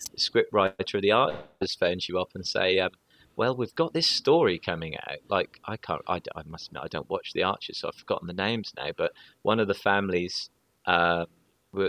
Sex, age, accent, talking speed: male, 30-49, British, 205 wpm